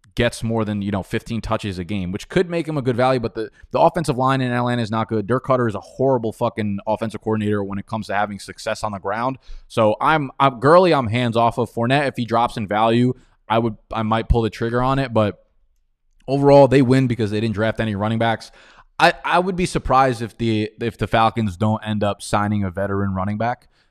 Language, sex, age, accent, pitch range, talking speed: English, male, 20-39, American, 100-120 Hz, 240 wpm